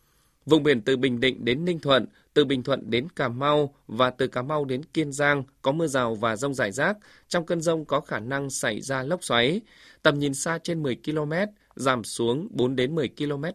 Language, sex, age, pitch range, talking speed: Vietnamese, male, 20-39, 125-160 Hz, 220 wpm